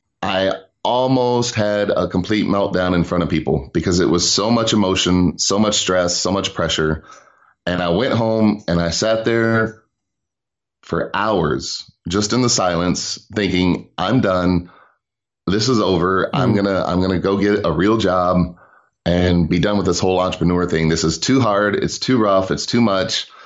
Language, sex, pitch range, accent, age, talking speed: English, male, 90-115 Hz, American, 30-49, 180 wpm